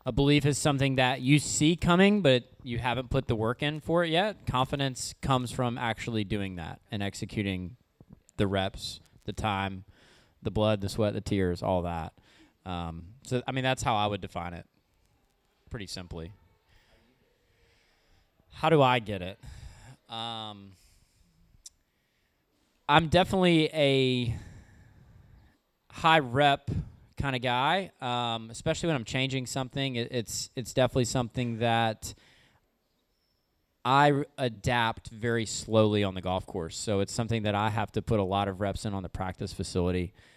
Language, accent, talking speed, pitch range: English, American, 150 wpm, 100-130 Hz